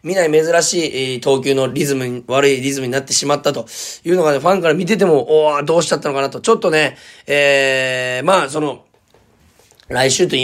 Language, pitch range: Japanese, 140-205 Hz